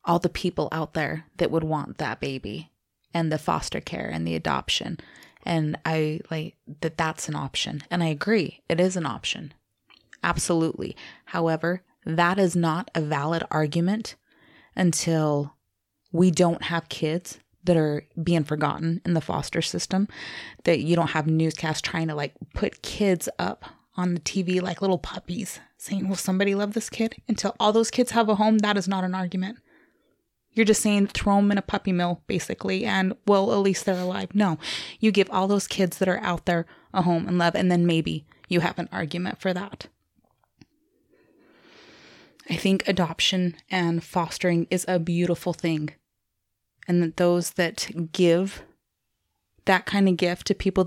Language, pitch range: English, 160-190 Hz